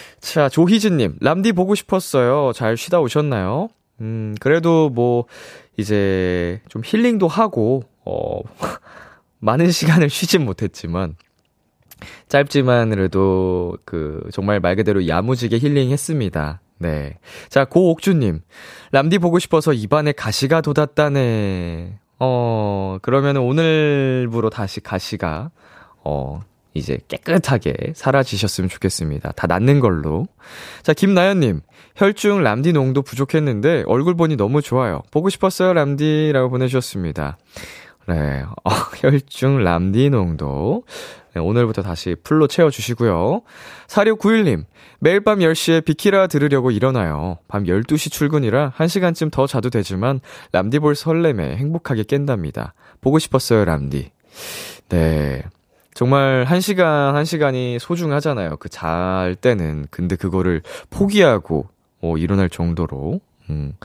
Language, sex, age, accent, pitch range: Korean, male, 20-39, native, 95-150 Hz